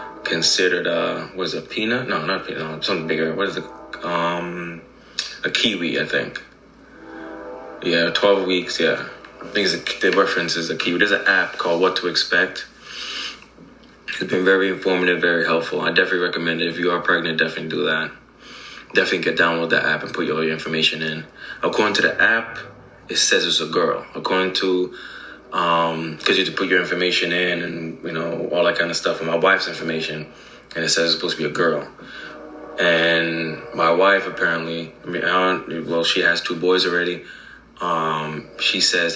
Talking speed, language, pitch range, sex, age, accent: 190 wpm, English, 80-90 Hz, male, 20-39, American